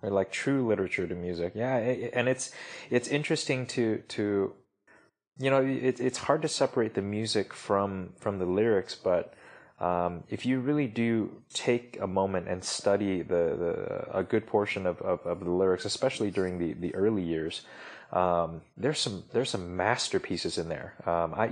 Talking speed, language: 180 wpm, English